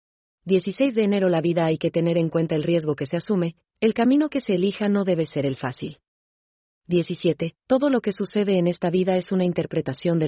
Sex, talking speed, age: female, 215 wpm, 30-49